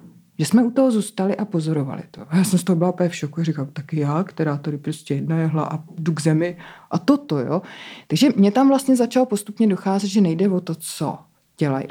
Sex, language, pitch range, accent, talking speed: female, Czech, 180-245 Hz, native, 215 wpm